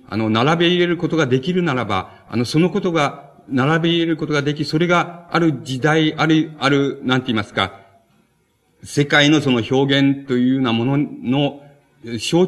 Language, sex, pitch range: Japanese, male, 115-160 Hz